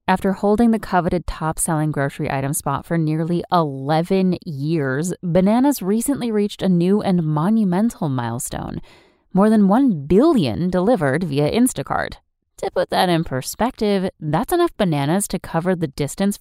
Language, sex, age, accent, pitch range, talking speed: English, female, 30-49, American, 145-200 Hz, 140 wpm